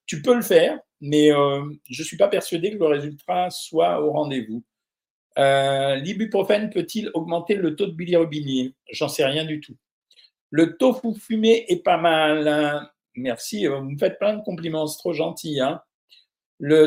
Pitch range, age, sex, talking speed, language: 145-180 Hz, 50-69, male, 180 wpm, French